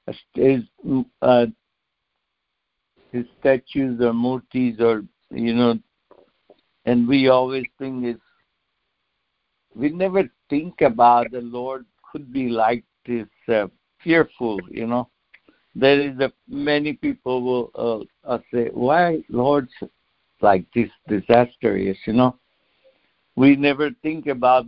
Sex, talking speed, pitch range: male, 120 wpm, 115-135 Hz